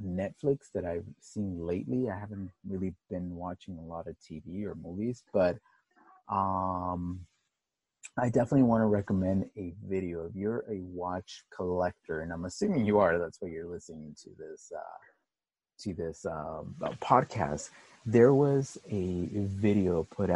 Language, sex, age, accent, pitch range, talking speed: English, male, 30-49, American, 90-105 Hz, 150 wpm